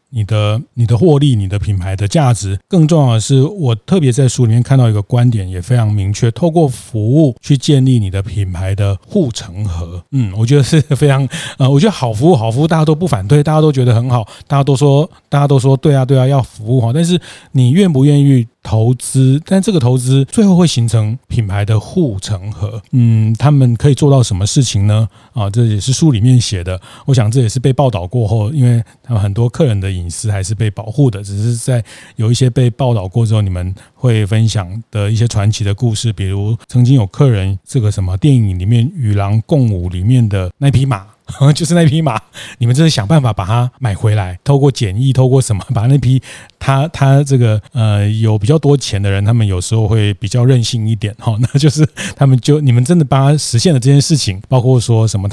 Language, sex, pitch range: Chinese, male, 110-135 Hz